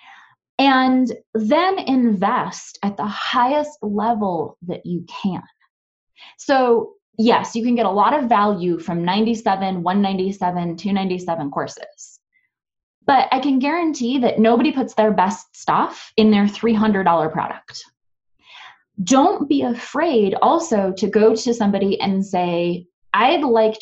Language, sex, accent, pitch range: English, female, American, 185-250 Hz